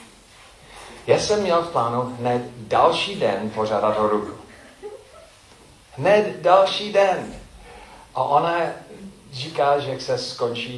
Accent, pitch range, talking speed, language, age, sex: native, 105-165 Hz, 115 wpm, Czech, 40-59, male